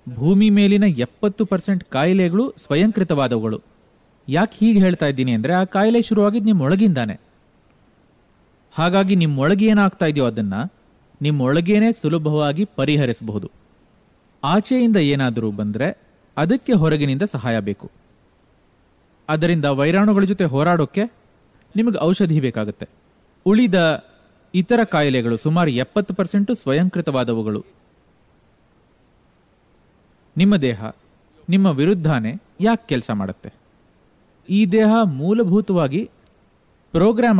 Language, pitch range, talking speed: English, 135-200 Hz, 85 wpm